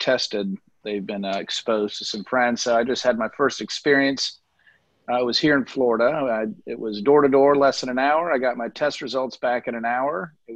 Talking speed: 215 wpm